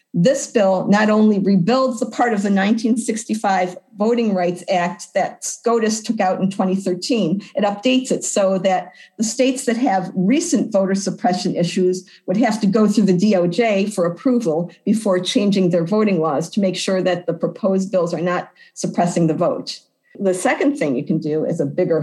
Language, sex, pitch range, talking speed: English, female, 185-235 Hz, 180 wpm